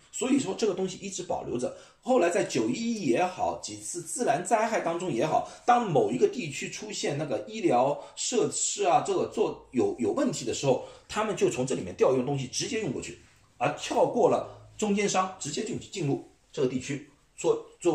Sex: male